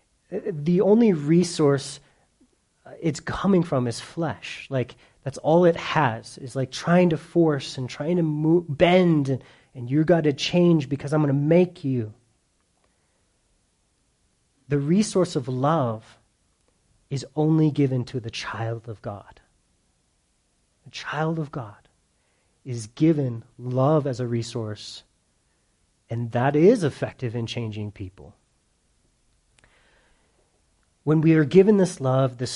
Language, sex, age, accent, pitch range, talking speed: English, male, 30-49, American, 120-155 Hz, 130 wpm